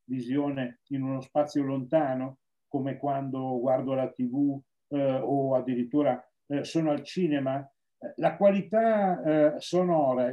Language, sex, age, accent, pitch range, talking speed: Italian, male, 50-69, native, 135-175 Hz, 115 wpm